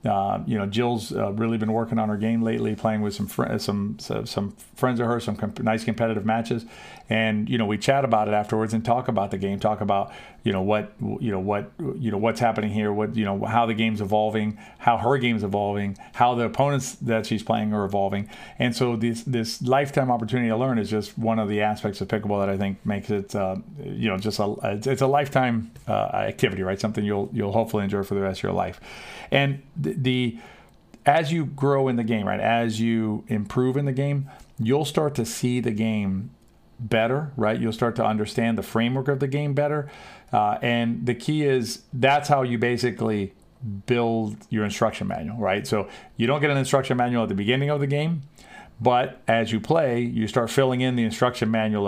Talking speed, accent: 215 wpm, American